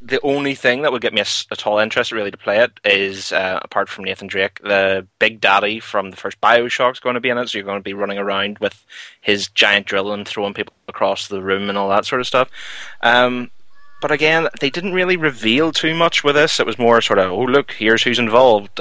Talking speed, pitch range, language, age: 245 wpm, 100-125 Hz, English, 20-39